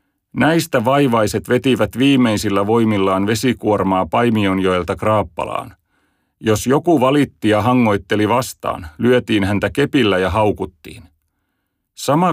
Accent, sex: native, male